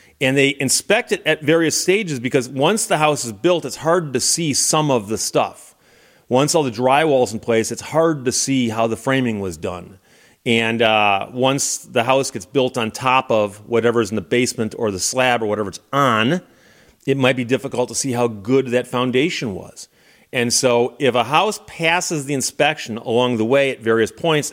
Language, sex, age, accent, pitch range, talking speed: English, male, 30-49, American, 115-145 Hz, 200 wpm